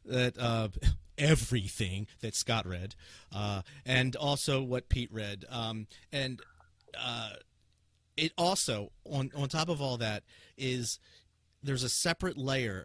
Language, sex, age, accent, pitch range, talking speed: English, male, 40-59, American, 105-130 Hz, 130 wpm